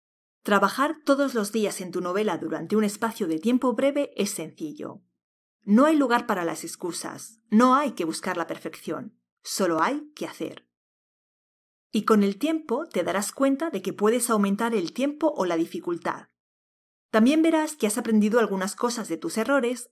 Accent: Spanish